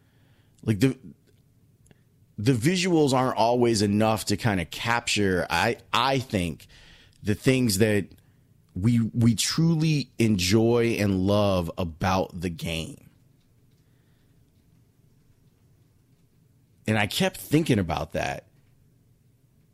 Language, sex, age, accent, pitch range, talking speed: English, male, 30-49, American, 100-130 Hz, 95 wpm